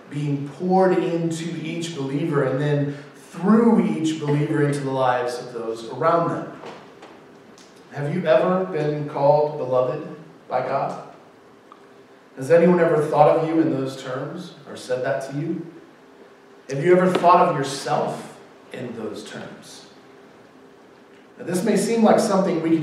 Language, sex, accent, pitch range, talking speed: English, male, American, 140-175 Hz, 145 wpm